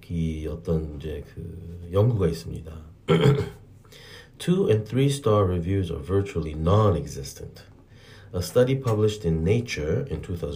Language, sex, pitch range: Korean, male, 85-115 Hz